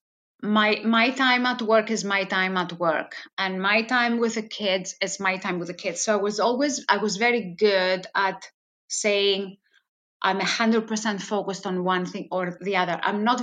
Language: English